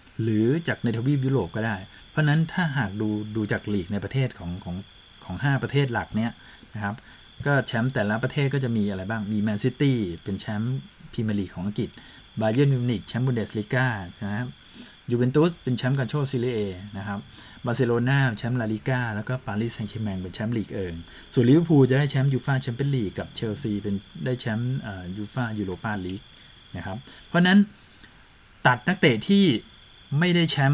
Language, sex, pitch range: Thai, male, 105-135 Hz